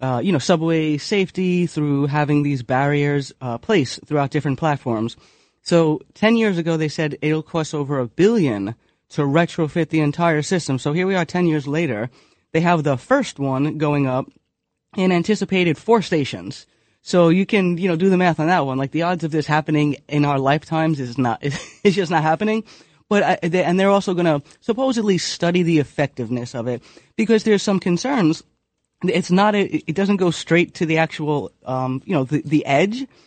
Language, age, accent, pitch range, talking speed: English, 30-49, American, 145-185 Hz, 195 wpm